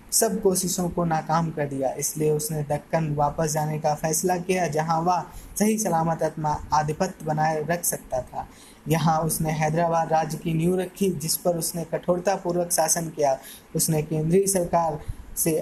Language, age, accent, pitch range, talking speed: Hindi, 20-39, native, 160-185 Hz, 160 wpm